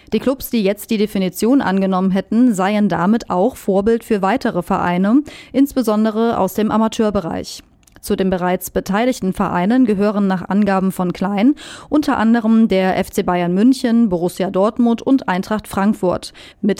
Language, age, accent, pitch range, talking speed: German, 30-49, German, 190-240 Hz, 145 wpm